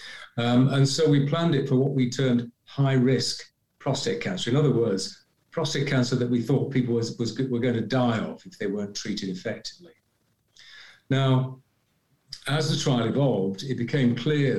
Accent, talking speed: British, 175 wpm